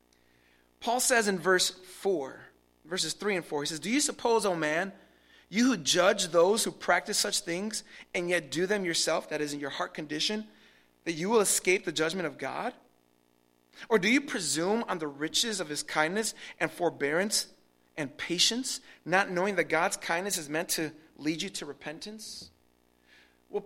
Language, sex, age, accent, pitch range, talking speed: English, male, 30-49, American, 155-225 Hz, 180 wpm